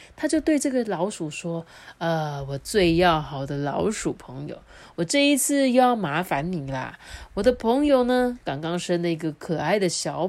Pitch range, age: 165-235 Hz, 30-49